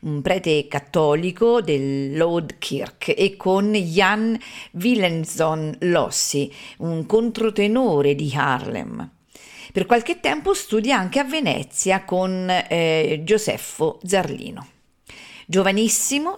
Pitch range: 150-205 Hz